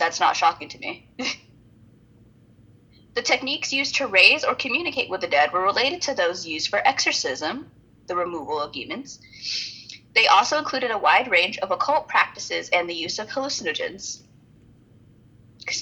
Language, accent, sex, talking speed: English, American, female, 155 wpm